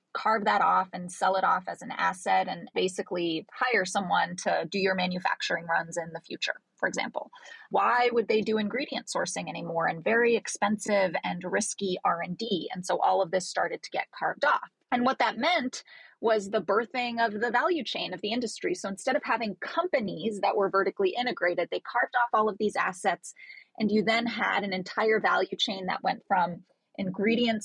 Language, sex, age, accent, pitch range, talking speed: English, female, 30-49, American, 190-235 Hz, 195 wpm